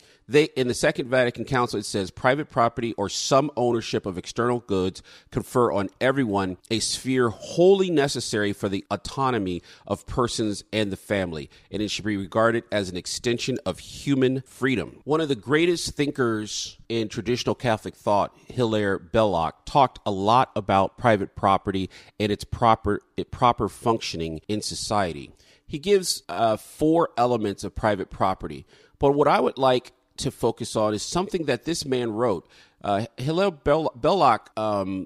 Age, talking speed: 40-59, 160 wpm